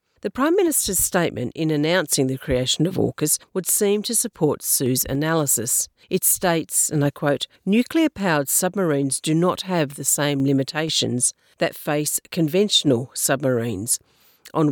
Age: 50-69